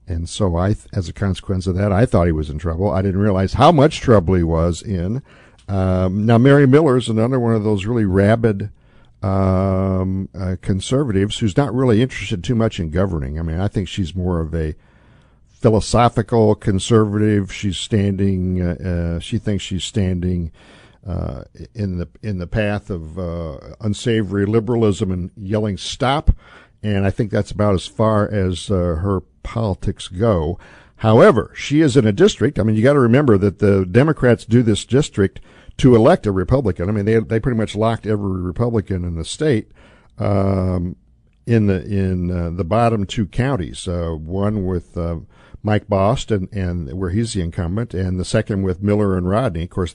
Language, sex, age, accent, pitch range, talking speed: English, male, 60-79, American, 90-110 Hz, 185 wpm